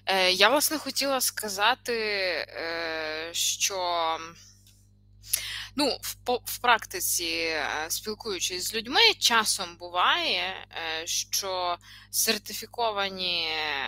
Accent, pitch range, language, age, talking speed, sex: native, 165-245 Hz, Ukrainian, 20-39, 65 wpm, female